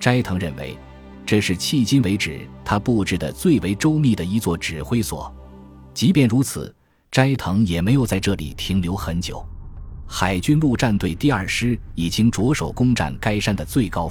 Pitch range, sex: 80-110 Hz, male